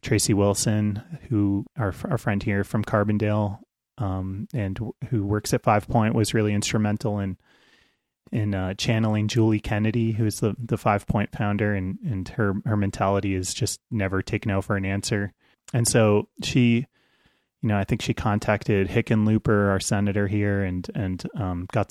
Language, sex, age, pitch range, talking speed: English, male, 30-49, 100-115 Hz, 175 wpm